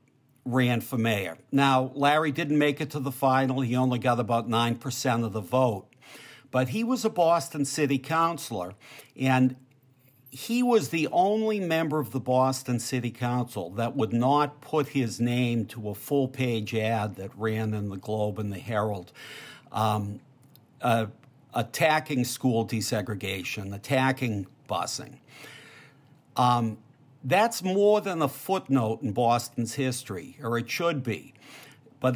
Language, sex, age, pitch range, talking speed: English, male, 60-79, 120-145 Hz, 140 wpm